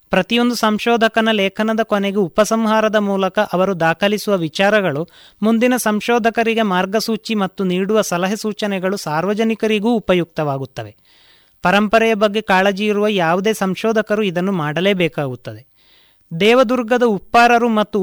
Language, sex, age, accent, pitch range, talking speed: Kannada, male, 30-49, native, 185-225 Hz, 95 wpm